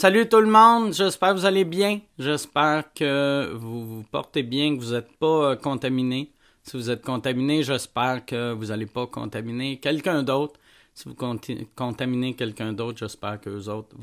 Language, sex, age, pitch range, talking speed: French, male, 30-49, 125-160 Hz, 185 wpm